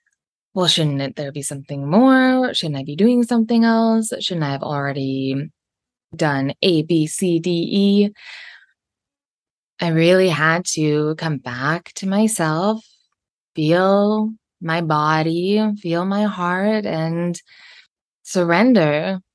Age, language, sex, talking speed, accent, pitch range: 20-39, English, female, 120 wpm, American, 160-220 Hz